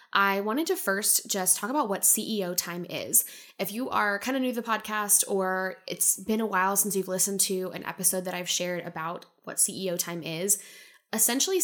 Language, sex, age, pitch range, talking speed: English, female, 10-29, 180-215 Hz, 205 wpm